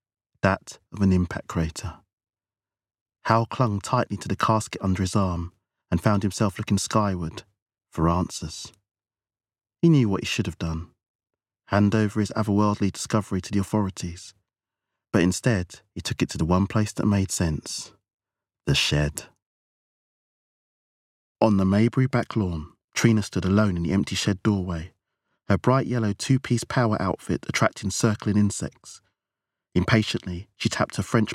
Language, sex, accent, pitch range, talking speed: English, male, British, 95-110 Hz, 150 wpm